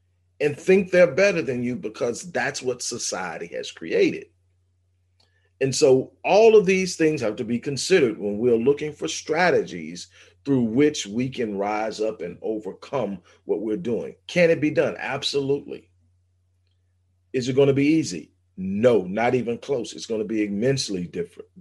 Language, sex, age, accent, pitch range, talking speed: English, male, 40-59, American, 95-140 Hz, 165 wpm